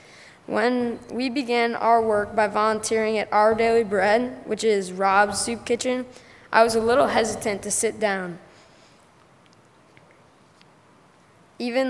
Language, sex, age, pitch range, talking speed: English, female, 10-29, 195-220 Hz, 125 wpm